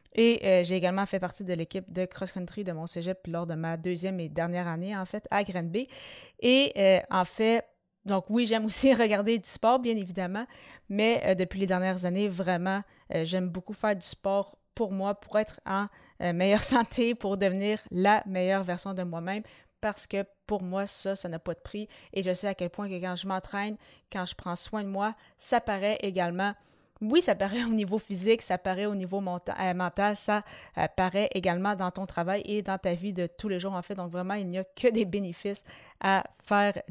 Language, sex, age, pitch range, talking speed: French, female, 30-49, 180-210 Hz, 220 wpm